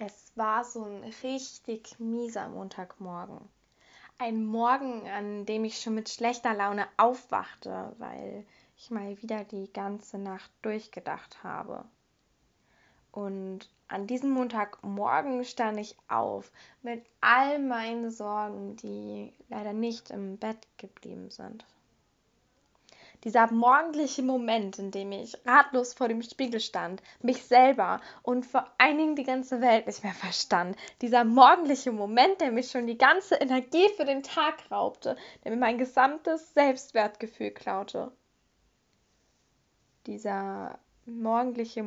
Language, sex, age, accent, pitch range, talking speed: German, female, 10-29, German, 200-250 Hz, 125 wpm